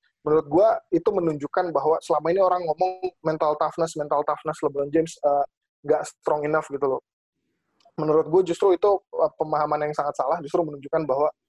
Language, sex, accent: Indonesian, male, native